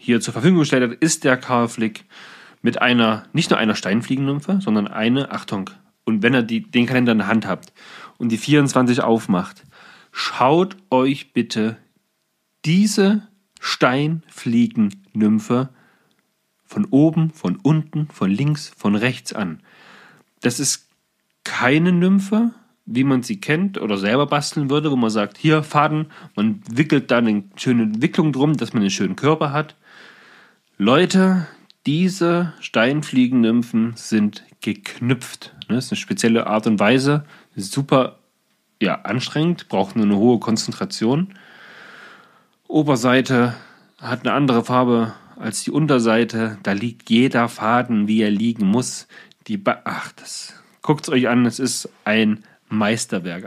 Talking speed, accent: 135 wpm, German